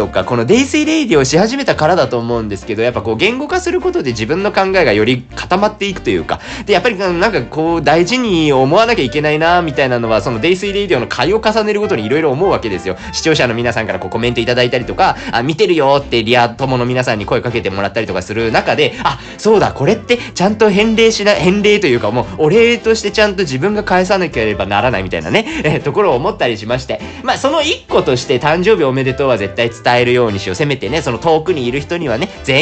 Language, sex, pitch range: Japanese, male, 120-200 Hz